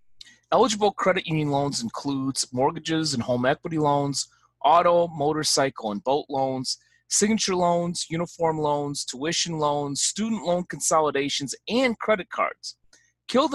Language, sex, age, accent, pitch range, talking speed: English, male, 30-49, American, 125-165 Hz, 125 wpm